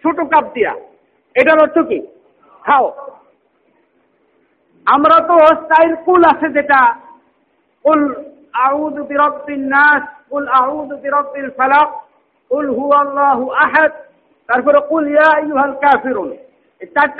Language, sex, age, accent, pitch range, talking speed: Bengali, male, 50-69, native, 280-320 Hz, 40 wpm